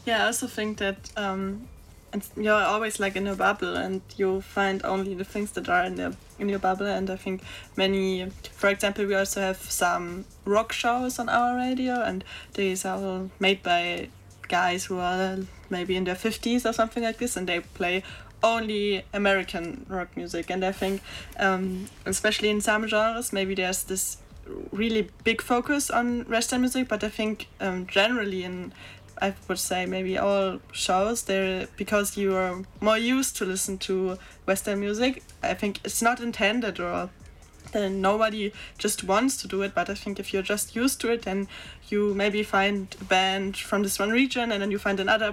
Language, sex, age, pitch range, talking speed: French, female, 20-39, 190-220 Hz, 185 wpm